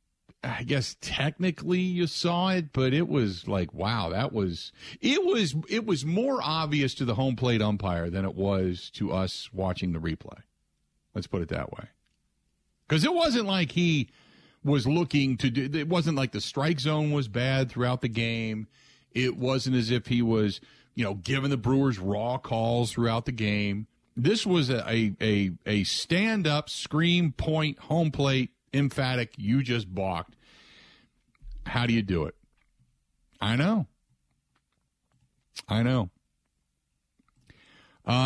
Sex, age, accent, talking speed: male, 50-69, American, 155 wpm